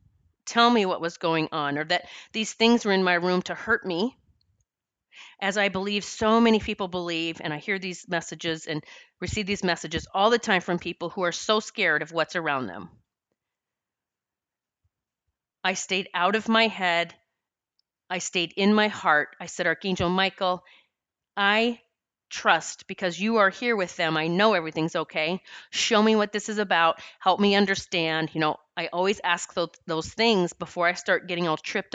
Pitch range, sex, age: 170-210 Hz, female, 30-49